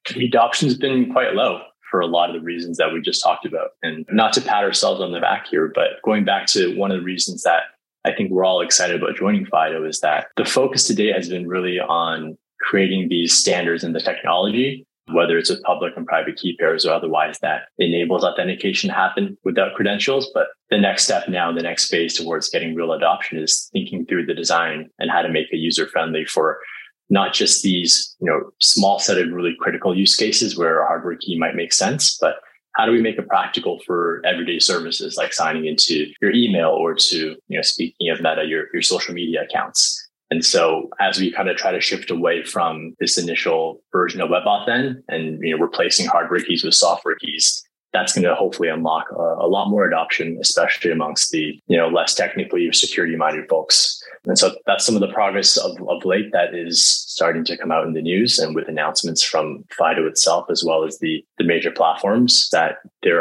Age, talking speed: 20-39, 210 wpm